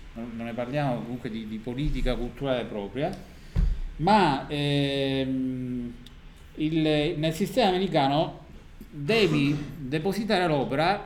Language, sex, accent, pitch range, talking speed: Italian, male, native, 120-160 Hz, 100 wpm